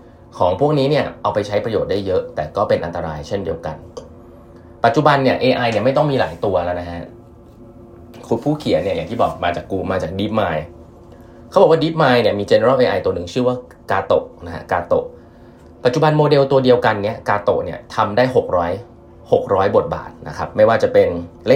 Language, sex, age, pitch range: Thai, male, 20-39, 90-140 Hz